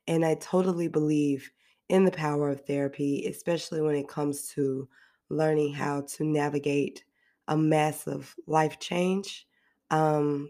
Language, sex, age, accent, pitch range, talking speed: English, female, 20-39, American, 145-165 Hz, 130 wpm